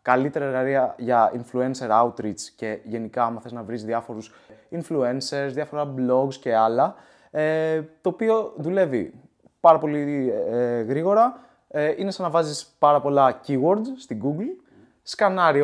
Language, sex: Greek, male